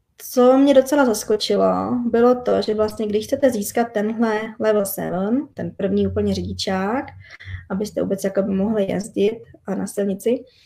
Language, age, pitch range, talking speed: Czech, 20-39, 190-225 Hz, 140 wpm